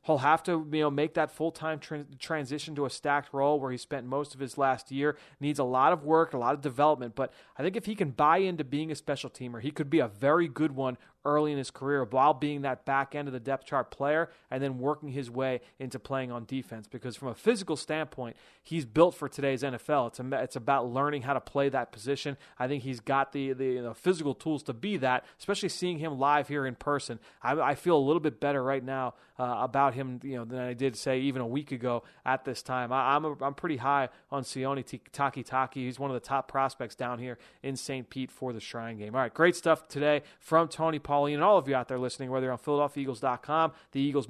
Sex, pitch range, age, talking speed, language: male, 130-150 Hz, 30-49, 250 wpm, English